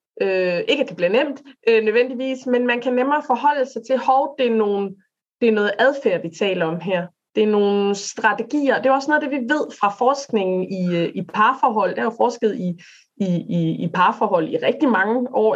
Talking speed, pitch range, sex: 205 wpm, 195-255 Hz, female